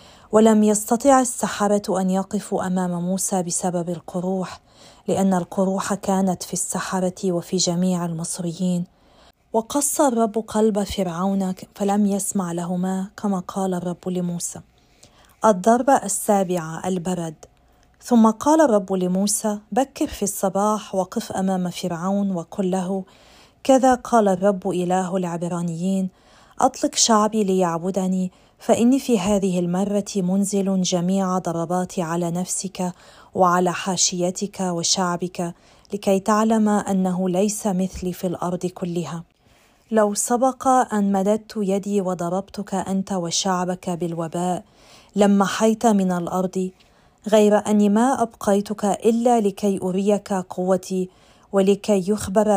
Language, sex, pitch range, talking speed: Arabic, female, 180-210 Hz, 105 wpm